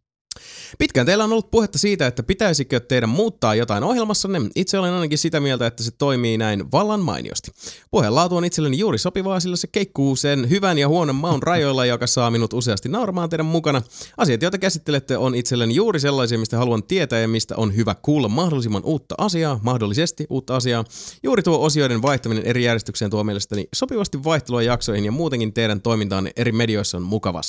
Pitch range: 115-170 Hz